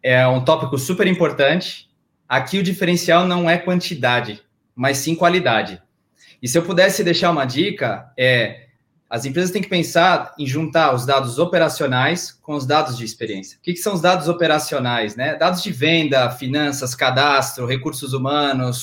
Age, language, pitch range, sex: 20-39, Portuguese, 130-180 Hz, male